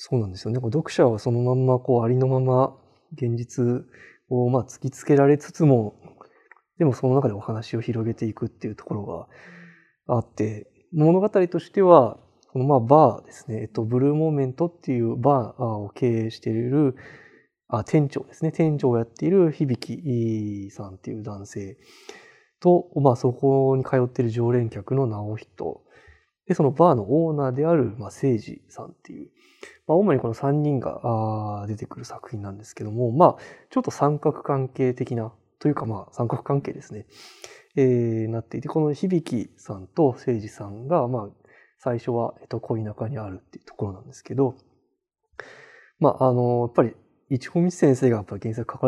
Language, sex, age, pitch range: Japanese, male, 20-39, 115-145 Hz